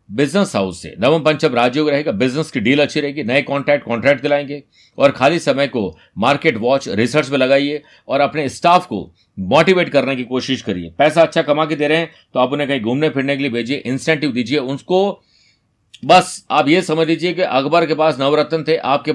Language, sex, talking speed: Hindi, male, 205 wpm